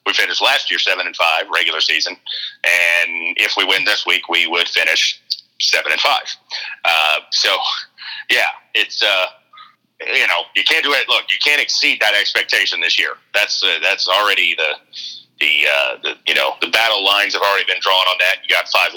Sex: male